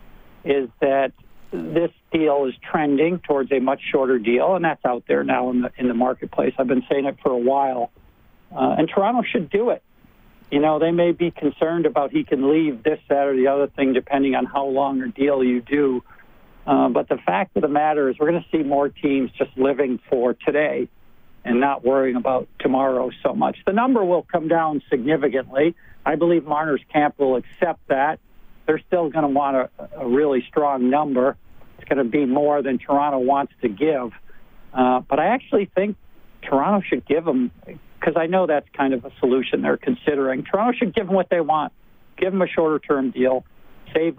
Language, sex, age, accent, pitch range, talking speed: English, male, 60-79, American, 130-155 Hz, 200 wpm